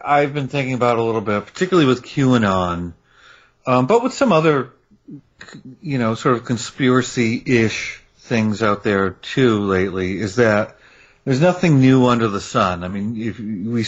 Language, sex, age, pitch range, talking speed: English, male, 40-59, 95-125 Hz, 155 wpm